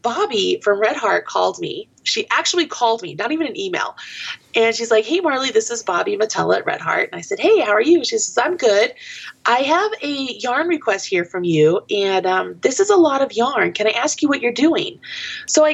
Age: 20-39